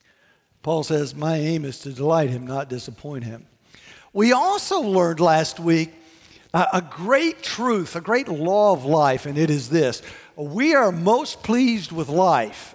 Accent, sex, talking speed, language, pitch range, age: American, male, 160 wpm, English, 155-210 Hz, 60-79